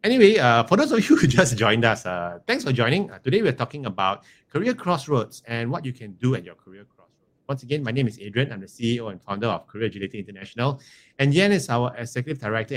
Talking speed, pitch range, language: 240 wpm, 110-140 Hz, English